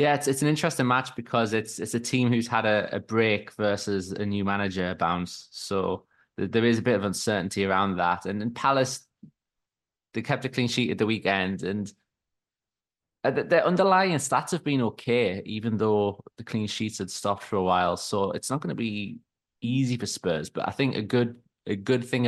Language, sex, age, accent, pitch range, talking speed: English, male, 20-39, British, 95-115 Hz, 200 wpm